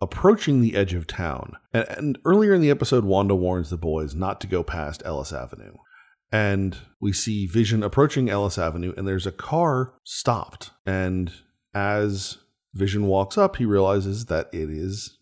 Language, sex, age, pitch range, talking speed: English, male, 30-49, 90-120 Hz, 170 wpm